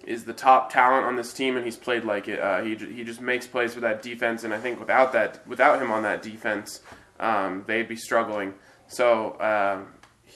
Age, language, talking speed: 20-39, English, 215 wpm